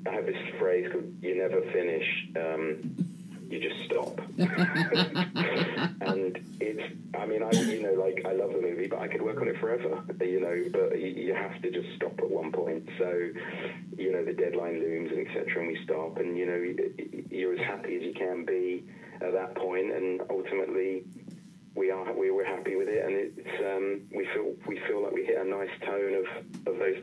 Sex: male